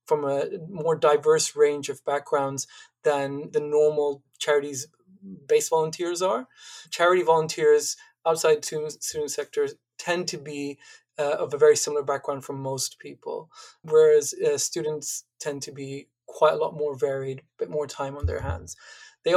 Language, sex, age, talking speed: English, male, 20-39, 155 wpm